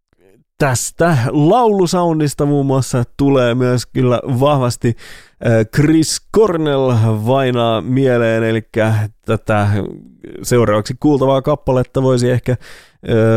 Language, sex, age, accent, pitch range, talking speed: English, male, 30-49, Finnish, 105-140 Hz, 85 wpm